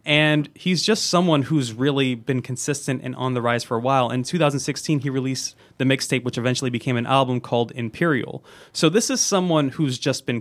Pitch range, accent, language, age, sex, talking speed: 125-155 Hz, American, English, 20-39, male, 200 wpm